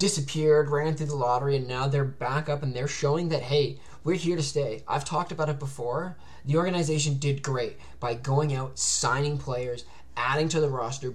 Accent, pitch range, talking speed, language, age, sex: American, 135-160 Hz, 200 wpm, English, 20-39, male